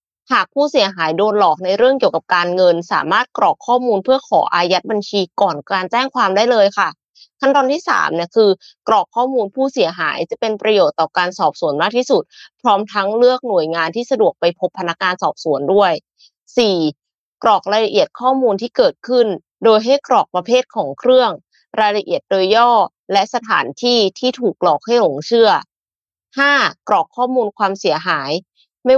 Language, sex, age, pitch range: Thai, female, 20-39, 190-250 Hz